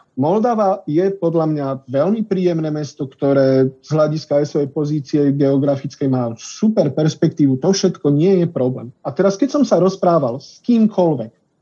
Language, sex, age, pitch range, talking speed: Slovak, male, 40-59, 140-190 Hz, 155 wpm